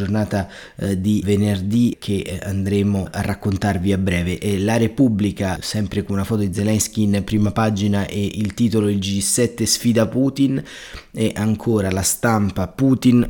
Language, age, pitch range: Italian, 30-49, 100-110 Hz